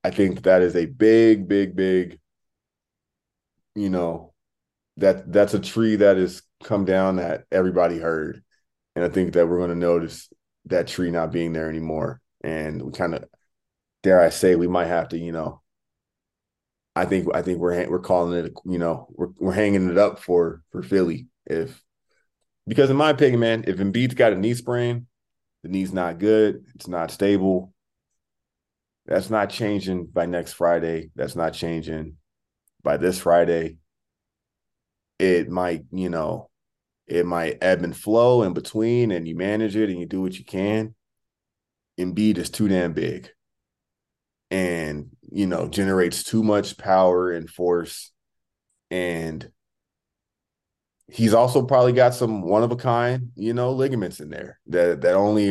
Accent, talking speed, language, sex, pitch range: American, 160 wpm, English, male, 85-105 Hz